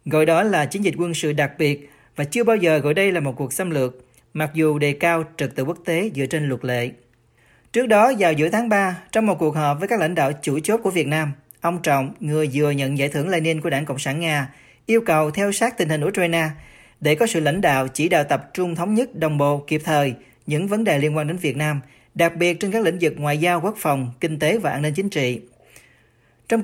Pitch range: 145-180 Hz